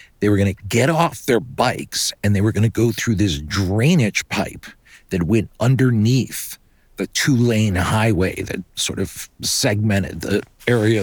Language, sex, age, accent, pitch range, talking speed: English, male, 50-69, American, 90-110 Hz, 160 wpm